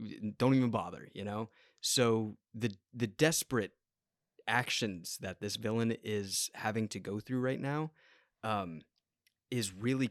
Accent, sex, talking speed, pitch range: American, male, 135 wpm, 105-130 Hz